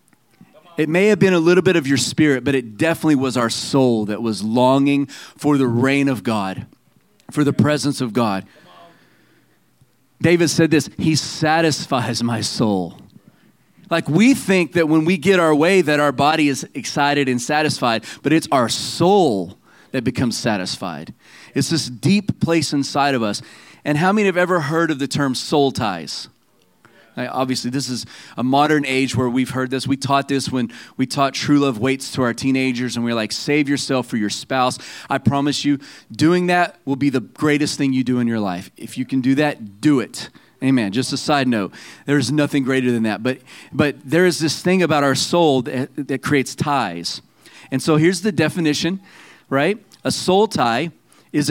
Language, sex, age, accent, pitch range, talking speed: English, male, 30-49, American, 130-160 Hz, 190 wpm